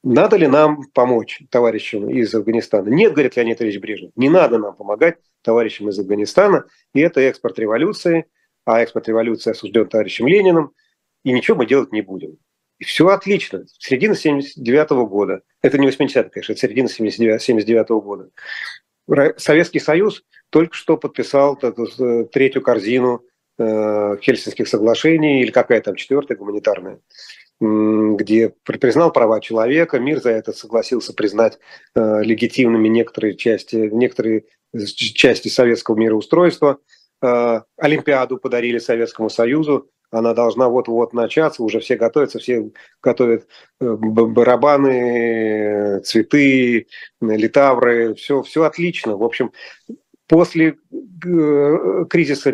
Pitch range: 110-140 Hz